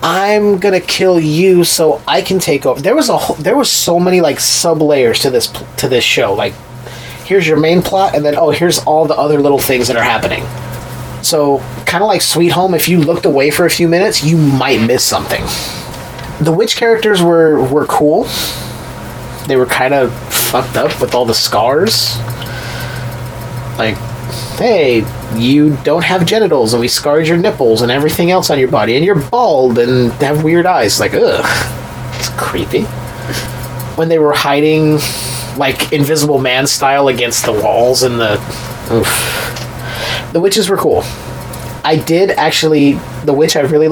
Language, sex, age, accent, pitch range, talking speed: English, male, 30-49, American, 120-170 Hz, 175 wpm